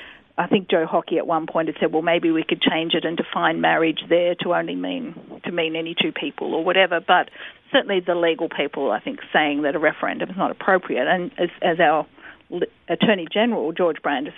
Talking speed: 215 wpm